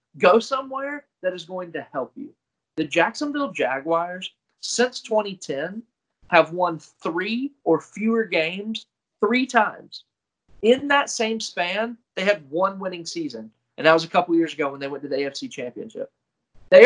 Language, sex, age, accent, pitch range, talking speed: English, male, 30-49, American, 155-225 Hz, 160 wpm